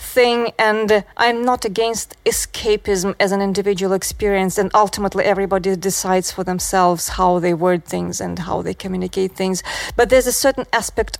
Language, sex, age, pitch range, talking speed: English, female, 30-49, 195-240 Hz, 160 wpm